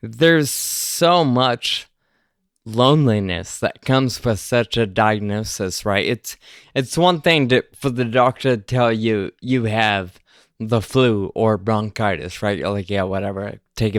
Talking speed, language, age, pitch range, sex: 145 wpm, English, 20-39, 110-135 Hz, male